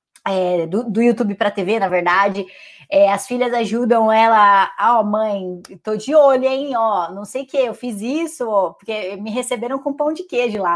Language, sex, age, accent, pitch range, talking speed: Portuguese, female, 20-39, Brazilian, 195-245 Hz, 200 wpm